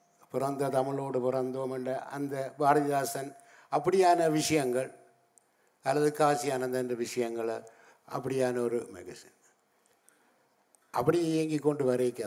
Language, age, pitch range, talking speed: Tamil, 60-79, 125-155 Hz, 95 wpm